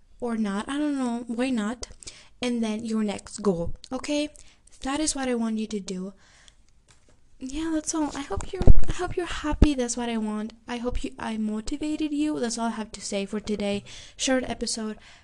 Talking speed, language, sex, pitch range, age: 200 wpm, English, female, 220-275 Hz, 10-29